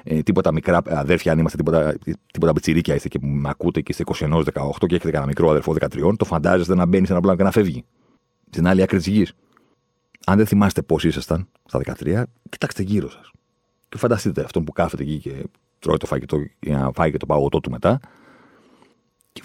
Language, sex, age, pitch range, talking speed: Greek, male, 40-59, 80-115 Hz, 200 wpm